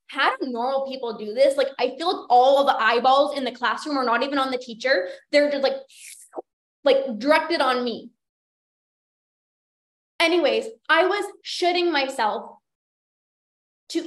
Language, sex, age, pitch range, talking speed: English, female, 20-39, 260-340 Hz, 155 wpm